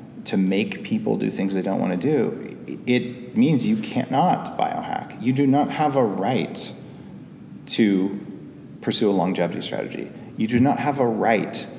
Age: 40-59